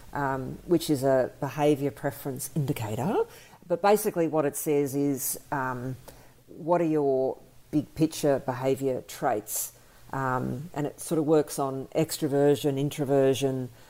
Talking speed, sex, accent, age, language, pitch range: 130 wpm, female, Australian, 50-69, English, 140-175 Hz